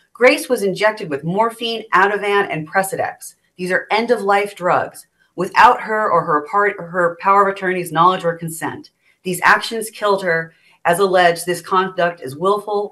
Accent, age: American, 40-59